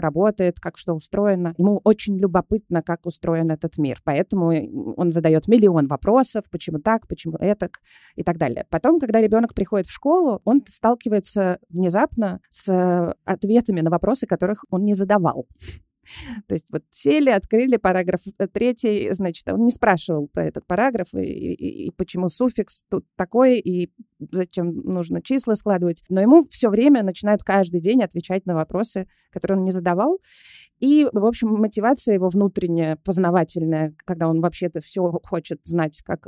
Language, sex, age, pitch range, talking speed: Russian, female, 20-39, 170-225 Hz, 155 wpm